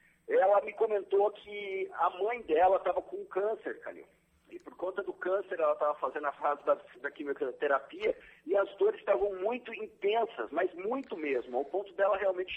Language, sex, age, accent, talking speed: Portuguese, male, 50-69, Brazilian, 175 wpm